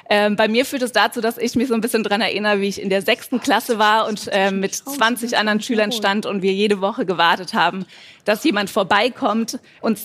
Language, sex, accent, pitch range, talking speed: German, female, German, 200-235 Hz, 235 wpm